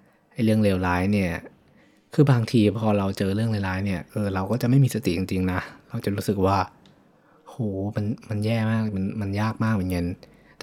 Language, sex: Thai, male